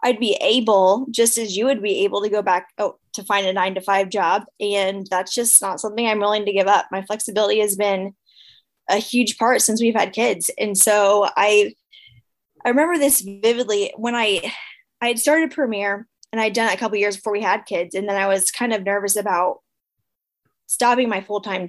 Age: 10-29